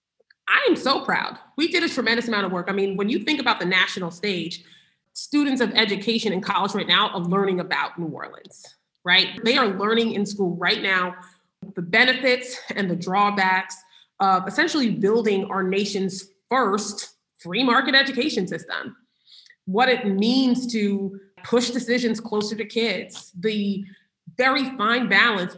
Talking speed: 160 wpm